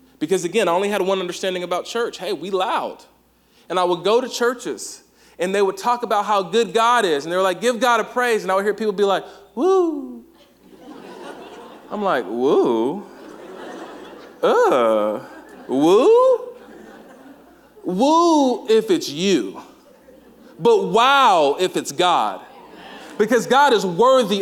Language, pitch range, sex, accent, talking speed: English, 225-290 Hz, male, American, 150 wpm